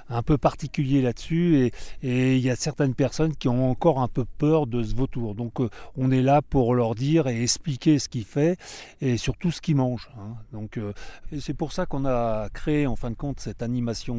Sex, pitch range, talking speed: male, 115-155 Hz, 230 wpm